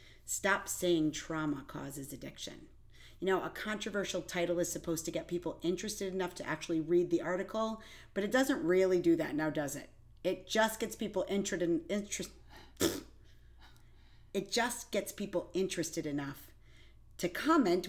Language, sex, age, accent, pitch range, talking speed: English, female, 40-59, American, 155-195 Hz, 155 wpm